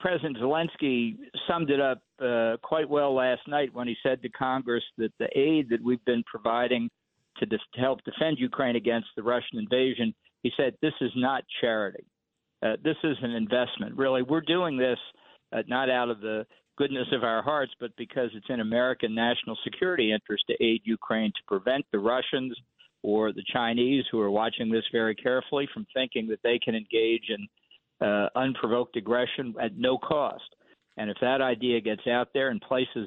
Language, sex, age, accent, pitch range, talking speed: English, male, 50-69, American, 115-135 Hz, 185 wpm